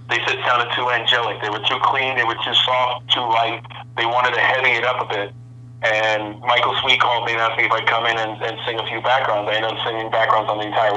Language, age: English, 40-59